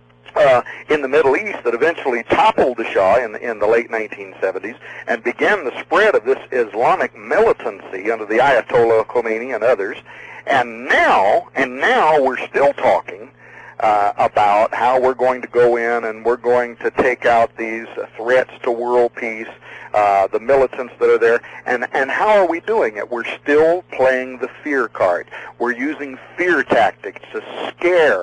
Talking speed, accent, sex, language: 170 wpm, American, male, English